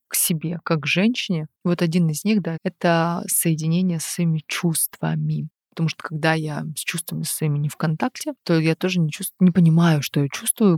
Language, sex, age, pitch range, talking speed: Russian, female, 20-39, 155-180 Hz, 200 wpm